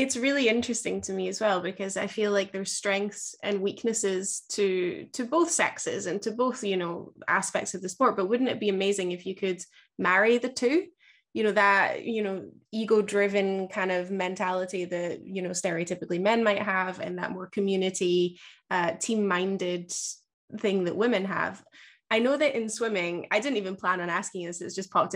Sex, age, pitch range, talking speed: female, 20-39, 185-225 Hz, 195 wpm